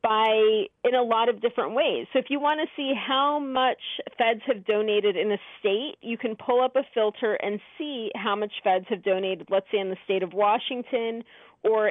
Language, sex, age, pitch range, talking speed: English, female, 30-49, 195-250 Hz, 210 wpm